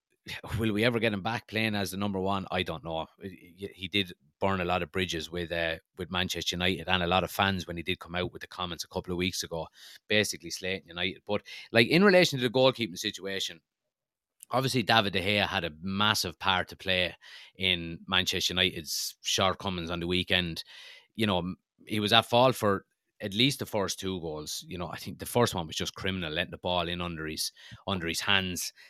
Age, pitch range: 30-49, 90-110 Hz